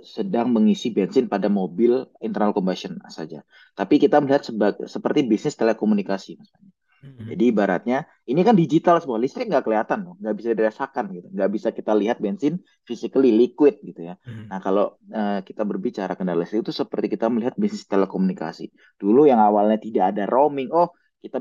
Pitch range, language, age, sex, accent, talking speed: 95-135 Hz, Indonesian, 20-39, male, native, 165 wpm